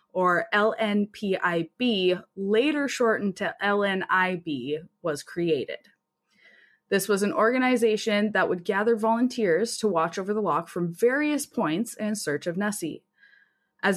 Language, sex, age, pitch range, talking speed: English, female, 20-39, 180-235 Hz, 125 wpm